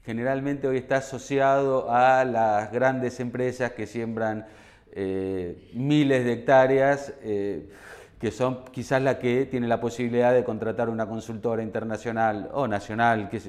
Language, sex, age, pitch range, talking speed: Spanish, male, 30-49, 115-145 Hz, 140 wpm